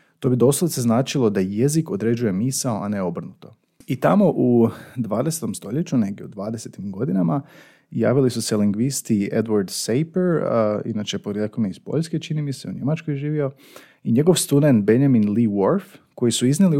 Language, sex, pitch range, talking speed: Croatian, male, 110-145 Hz, 170 wpm